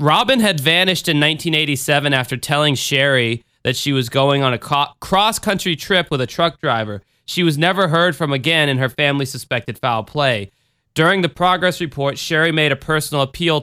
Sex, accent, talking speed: male, American, 185 wpm